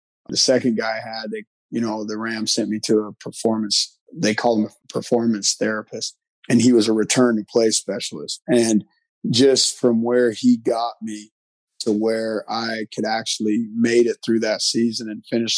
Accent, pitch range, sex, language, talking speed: American, 110-120 Hz, male, English, 175 wpm